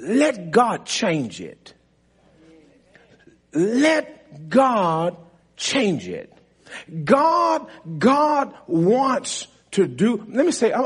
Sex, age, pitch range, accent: male, 40-59, 170-245 Hz, American